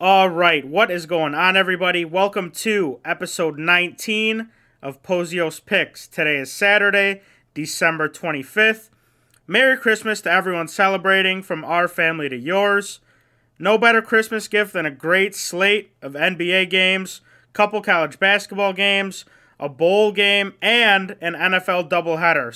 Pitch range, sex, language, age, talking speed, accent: 175-205 Hz, male, English, 30-49, 135 wpm, American